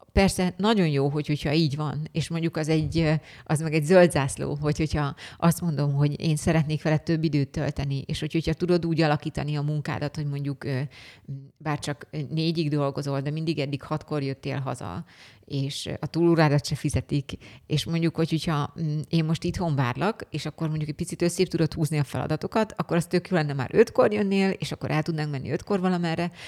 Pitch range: 140-165 Hz